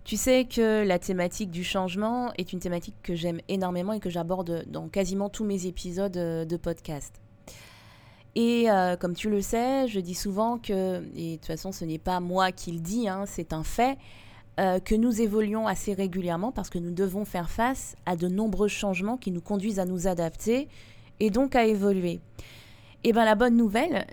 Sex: female